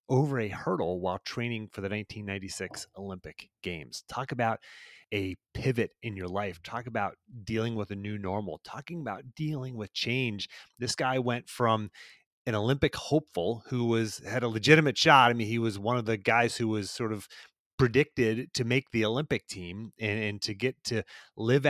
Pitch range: 110-135 Hz